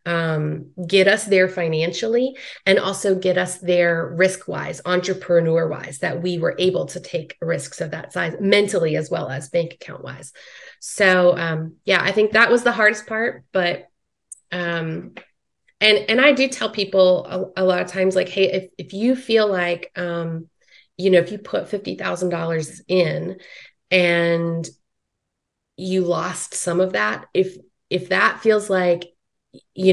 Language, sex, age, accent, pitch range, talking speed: English, female, 30-49, American, 170-195 Hz, 160 wpm